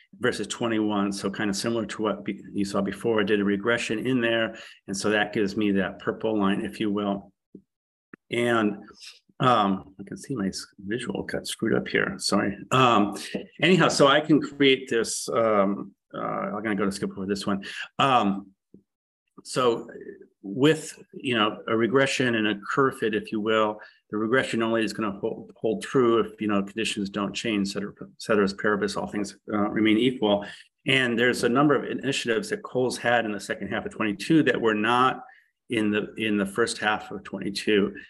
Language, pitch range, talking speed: English, 100-115 Hz, 190 wpm